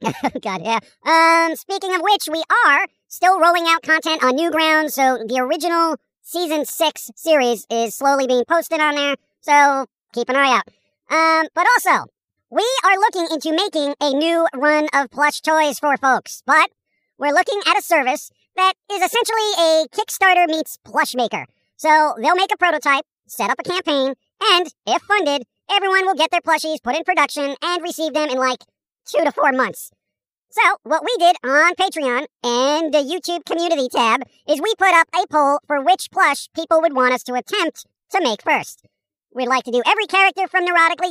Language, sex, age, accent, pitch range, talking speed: English, male, 40-59, American, 275-355 Hz, 185 wpm